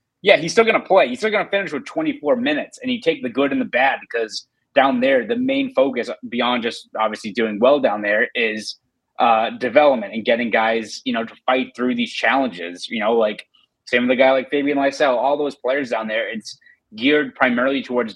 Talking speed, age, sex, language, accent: 220 wpm, 30-49, male, English, American